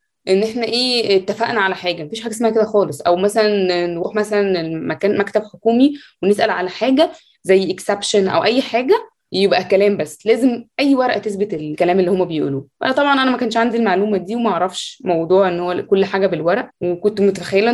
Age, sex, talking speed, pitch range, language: 20-39, female, 185 wpm, 190-230 Hz, Arabic